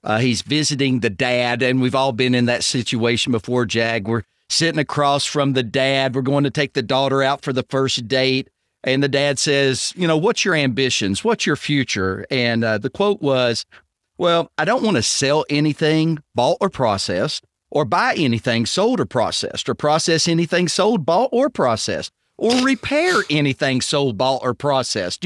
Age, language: 40-59, English